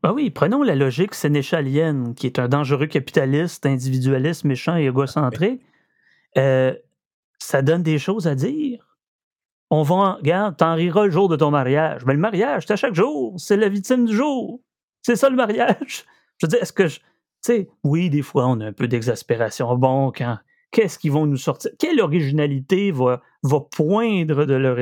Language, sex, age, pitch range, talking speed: French, male, 30-49, 130-190 Hz, 195 wpm